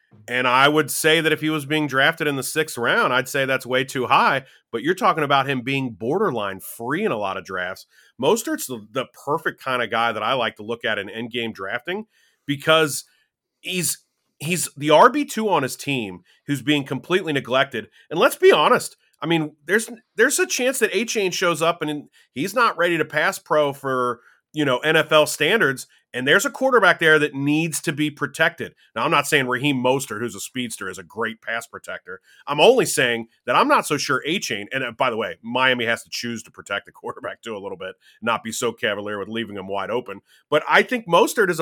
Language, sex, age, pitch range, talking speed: English, male, 30-49, 125-170 Hz, 215 wpm